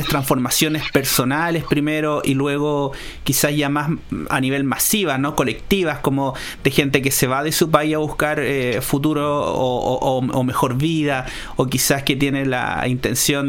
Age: 30-49